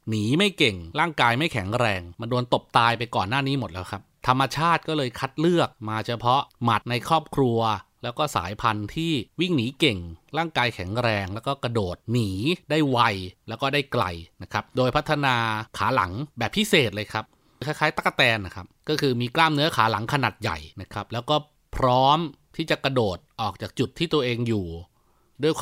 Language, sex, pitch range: Thai, male, 110-150 Hz